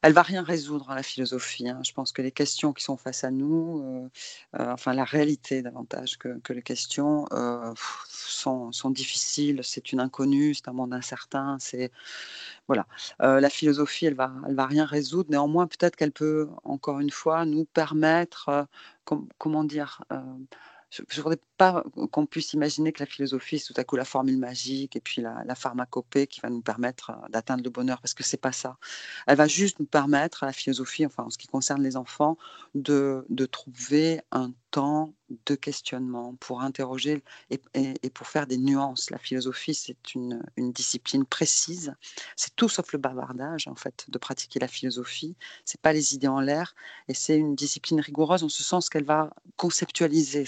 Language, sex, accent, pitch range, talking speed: French, female, French, 130-155 Hz, 195 wpm